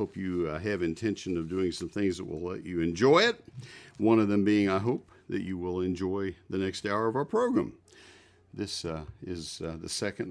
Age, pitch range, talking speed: 50-69, 90-110 Hz, 215 wpm